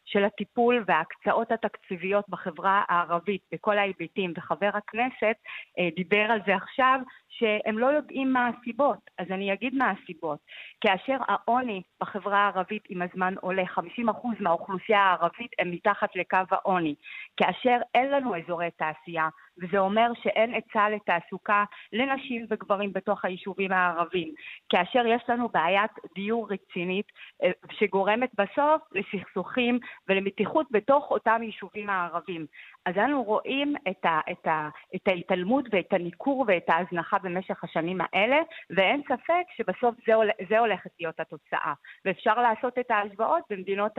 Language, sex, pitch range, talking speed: Hebrew, female, 185-235 Hz, 125 wpm